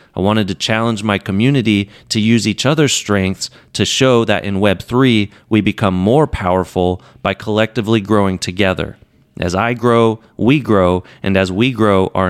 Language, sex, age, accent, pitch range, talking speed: English, male, 30-49, American, 95-120 Hz, 165 wpm